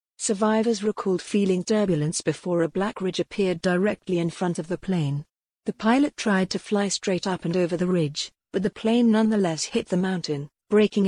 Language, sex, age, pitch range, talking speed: English, female, 50-69, 170-205 Hz, 185 wpm